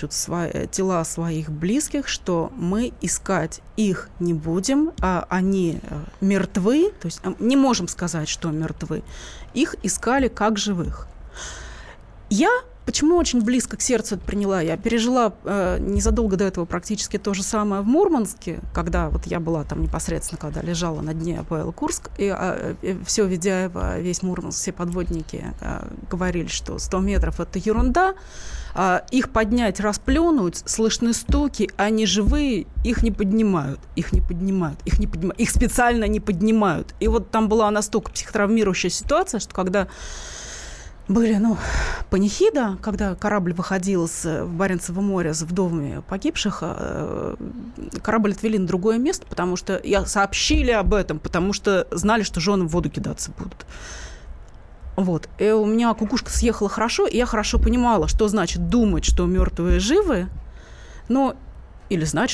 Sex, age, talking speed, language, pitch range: female, 20-39, 145 wpm, Russian, 175-225 Hz